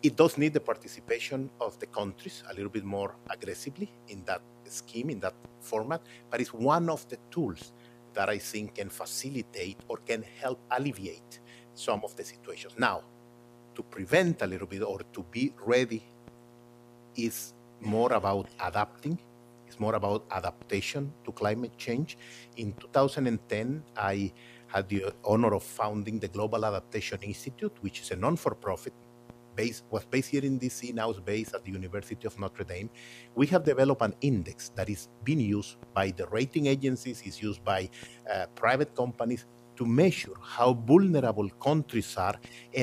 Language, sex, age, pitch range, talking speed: English, male, 50-69, 110-130 Hz, 160 wpm